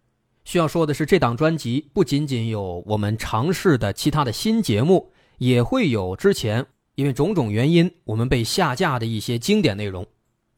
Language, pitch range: Chinese, 115-170 Hz